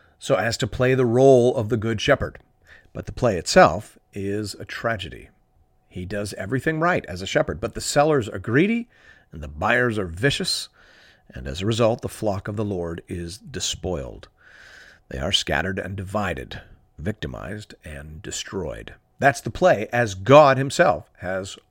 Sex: male